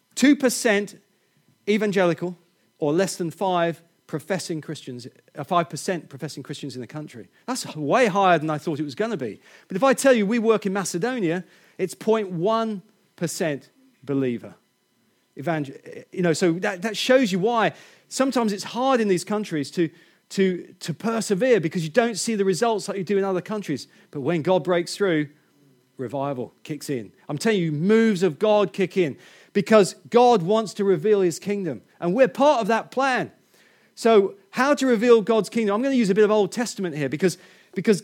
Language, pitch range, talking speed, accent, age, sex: English, 170-225 Hz, 175 wpm, British, 40-59, male